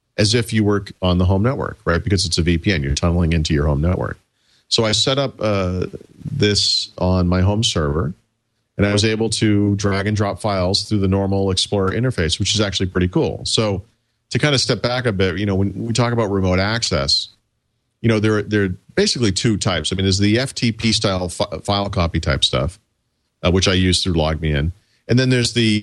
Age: 40-59